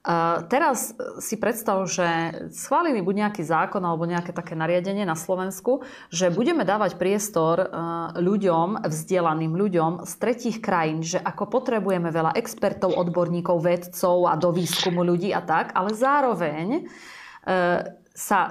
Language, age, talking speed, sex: Slovak, 30-49, 130 wpm, female